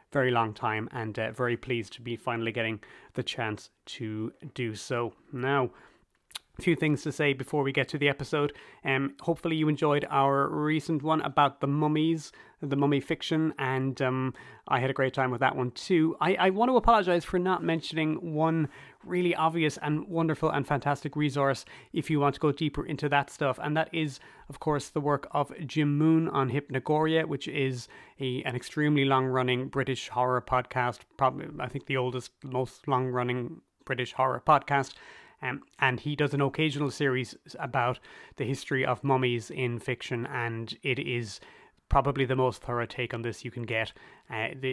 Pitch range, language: 125-150 Hz, English